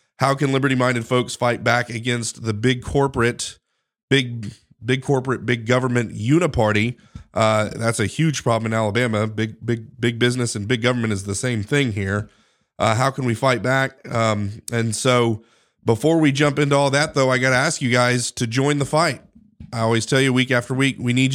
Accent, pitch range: American, 115-135 Hz